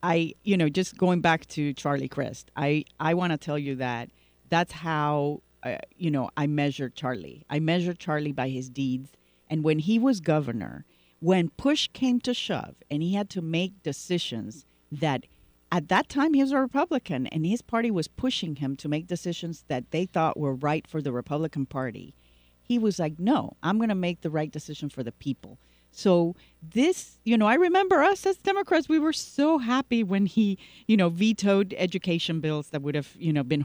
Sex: female